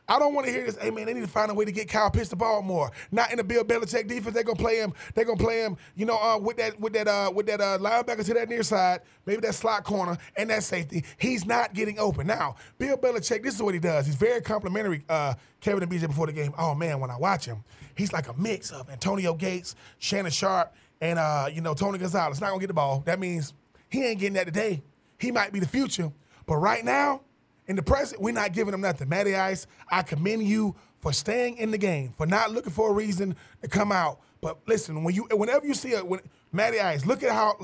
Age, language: 20-39, English